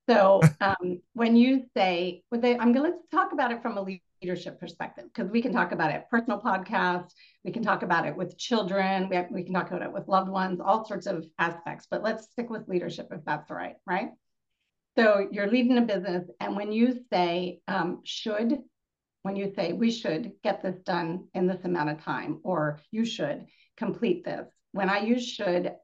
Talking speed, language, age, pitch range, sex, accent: 195 wpm, English, 40-59, 180-230 Hz, female, American